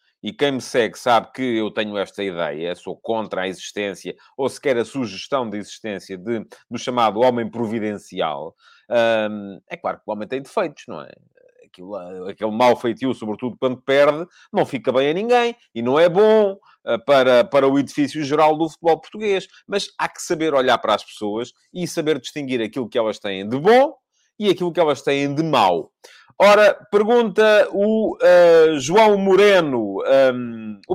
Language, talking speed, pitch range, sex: Portuguese, 170 wpm, 125-195 Hz, male